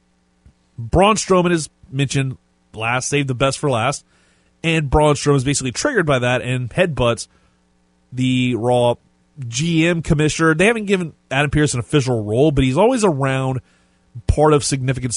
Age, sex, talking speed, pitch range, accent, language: 30-49, male, 155 wpm, 115-150 Hz, American, English